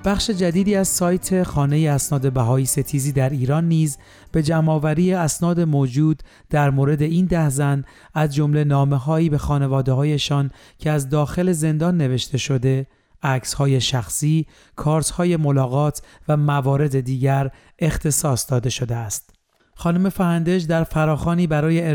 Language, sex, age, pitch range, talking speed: Persian, male, 40-59, 135-155 Hz, 135 wpm